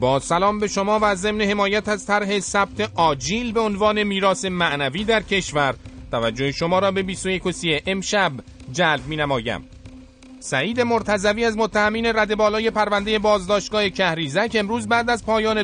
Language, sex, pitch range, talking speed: Persian, male, 160-220 Hz, 155 wpm